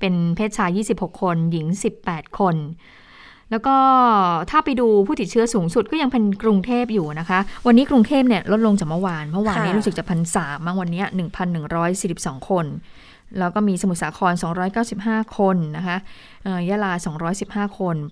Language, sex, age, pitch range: Thai, female, 20-39, 175-220 Hz